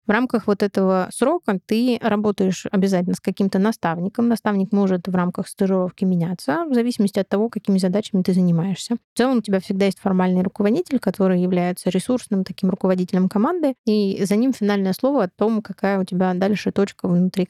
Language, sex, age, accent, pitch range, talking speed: Russian, female, 20-39, native, 190-220 Hz, 180 wpm